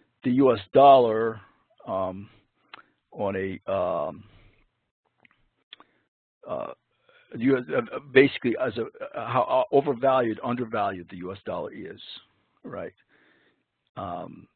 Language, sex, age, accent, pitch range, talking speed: English, male, 60-79, American, 100-125 Hz, 80 wpm